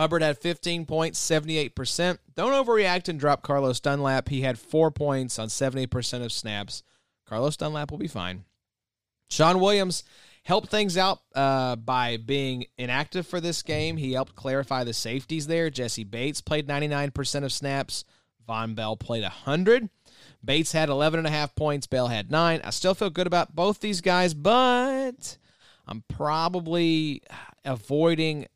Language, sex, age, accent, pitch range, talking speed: English, male, 30-49, American, 120-160 Hz, 145 wpm